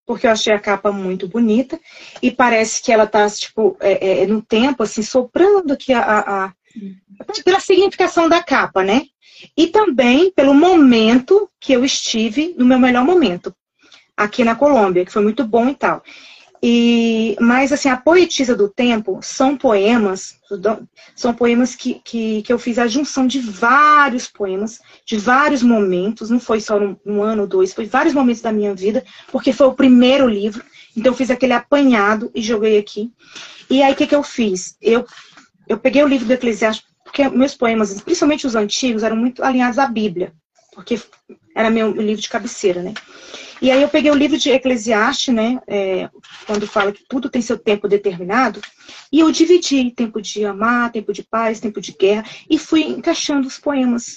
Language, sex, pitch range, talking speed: Portuguese, female, 215-275 Hz, 180 wpm